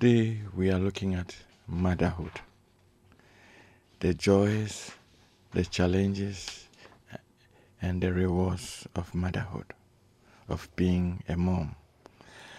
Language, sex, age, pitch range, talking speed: English, male, 60-79, 90-100 Hz, 90 wpm